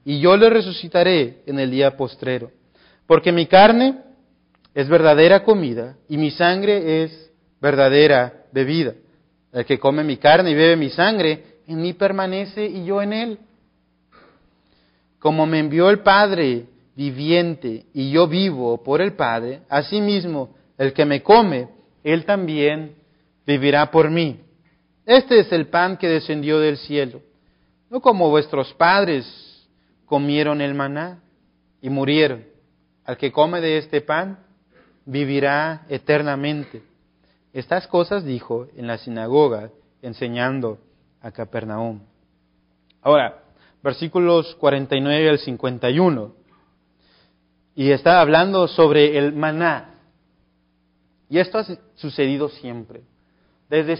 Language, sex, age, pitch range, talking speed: Spanish, male, 40-59, 125-170 Hz, 120 wpm